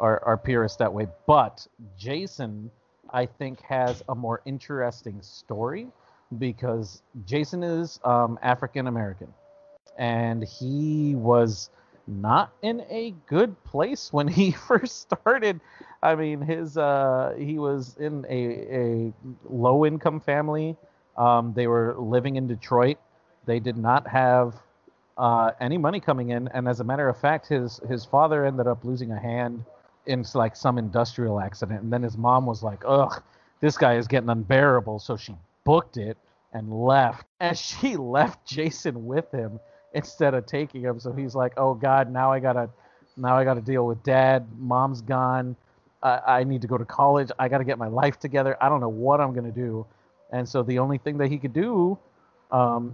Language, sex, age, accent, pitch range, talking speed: English, male, 40-59, American, 120-145 Hz, 175 wpm